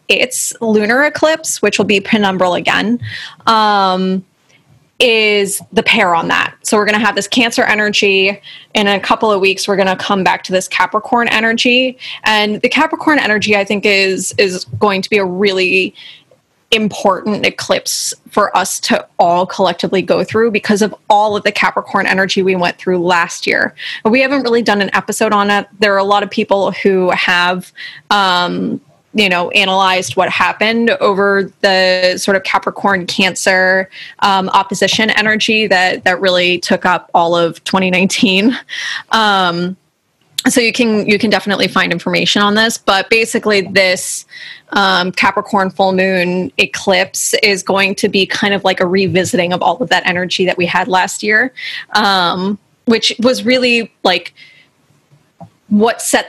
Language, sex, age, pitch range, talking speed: English, female, 20-39, 185-215 Hz, 165 wpm